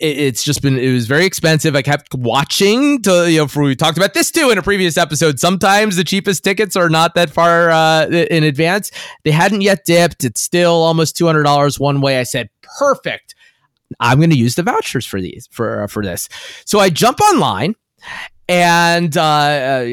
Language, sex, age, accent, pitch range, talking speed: English, male, 30-49, American, 135-175 Hz, 195 wpm